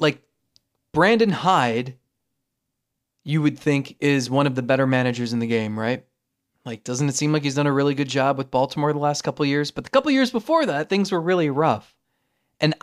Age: 20-39